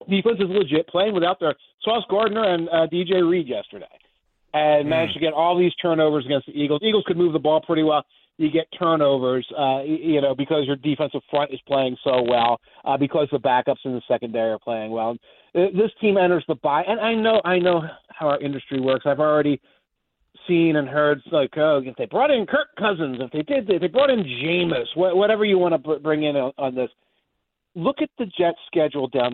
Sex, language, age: male, English, 40-59